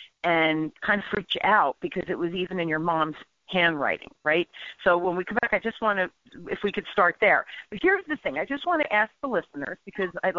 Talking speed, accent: 245 wpm, American